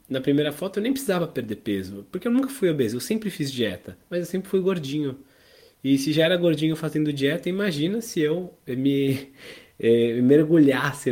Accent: Brazilian